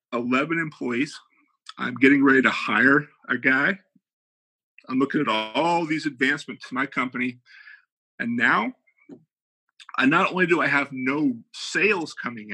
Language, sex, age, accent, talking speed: English, male, 50-69, American, 145 wpm